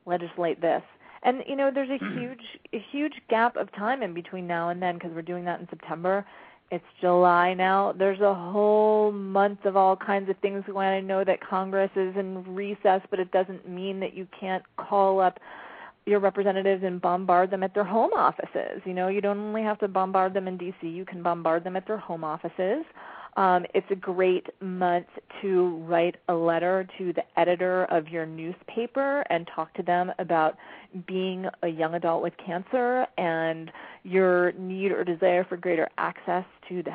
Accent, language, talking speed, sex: American, English, 190 wpm, female